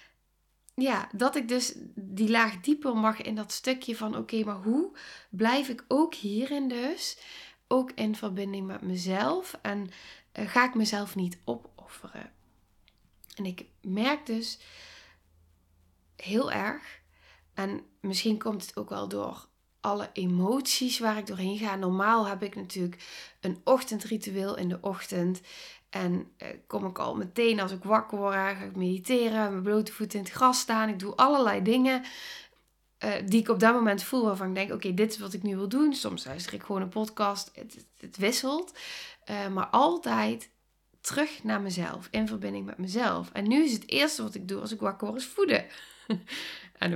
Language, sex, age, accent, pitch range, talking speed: Dutch, female, 20-39, Dutch, 190-250 Hz, 175 wpm